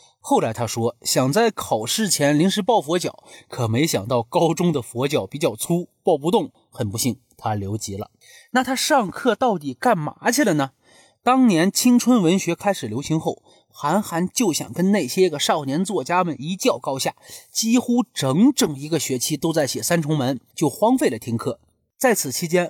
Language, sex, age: Chinese, male, 30-49